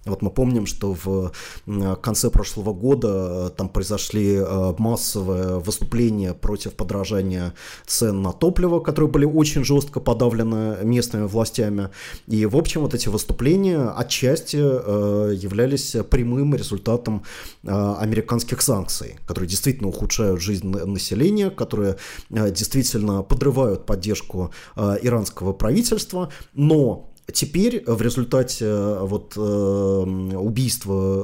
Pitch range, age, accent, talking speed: 105-130 Hz, 30-49, native, 100 wpm